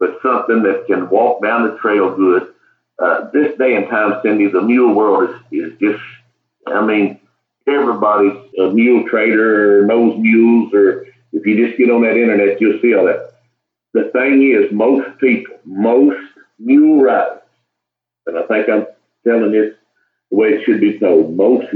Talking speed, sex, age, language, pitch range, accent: 175 wpm, male, 50-69, English, 105-135 Hz, American